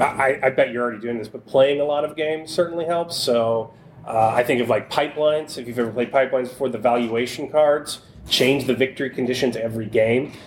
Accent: American